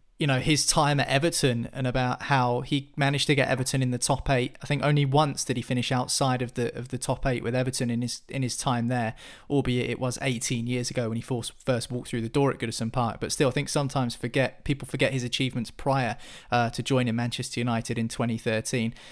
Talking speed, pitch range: 235 wpm, 125-155 Hz